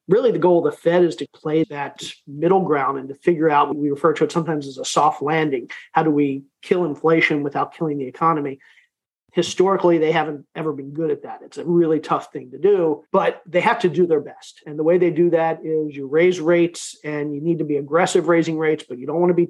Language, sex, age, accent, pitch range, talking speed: English, male, 40-59, American, 150-175 Hz, 250 wpm